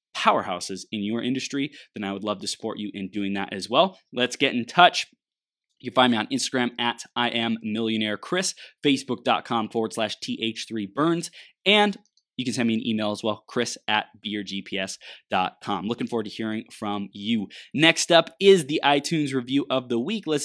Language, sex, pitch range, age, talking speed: English, male, 110-155 Hz, 20-39, 190 wpm